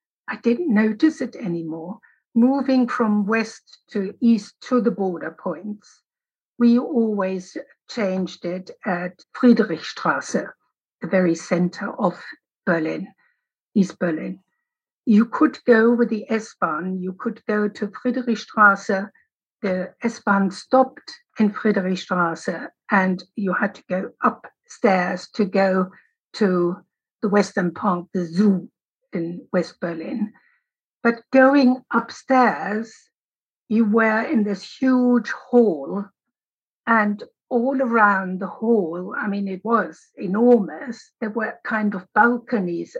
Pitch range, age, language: 190-245 Hz, 60-79, English